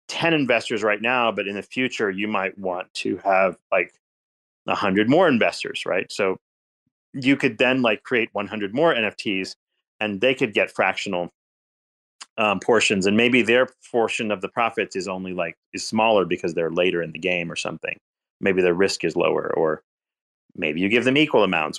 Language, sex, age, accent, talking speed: English, male, 30-49, American, 180 wpm